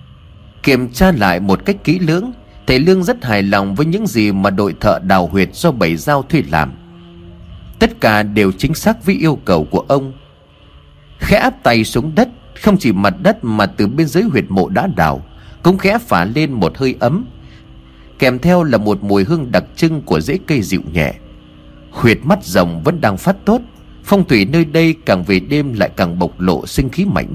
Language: Vietnamese